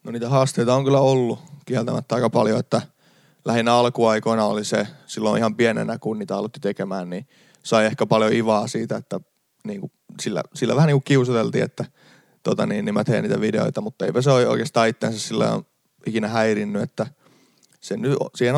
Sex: male